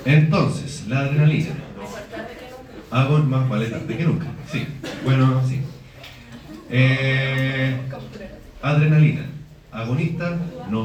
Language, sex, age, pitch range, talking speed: Spanish, male, 40-59, 125-155 Hz, 85 wpm